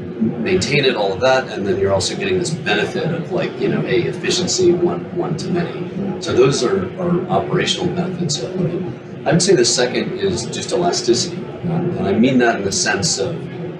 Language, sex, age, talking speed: English, male, 30-49, 200 wpm